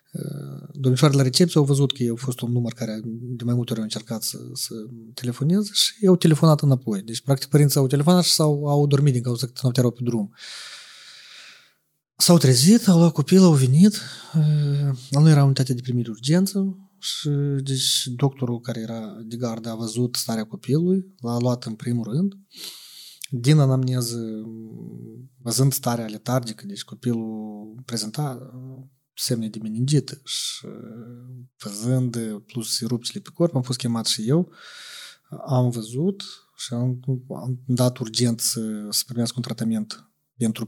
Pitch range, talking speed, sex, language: 120-145 Hz, 160 wpm, male, Romanian